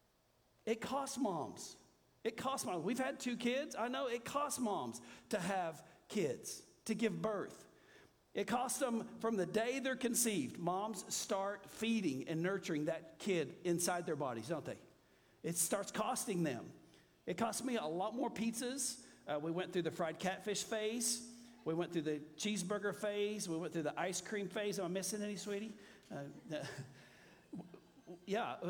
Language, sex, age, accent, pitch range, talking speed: English, male, 50-69, American, 160-225 Hz, 165 wpm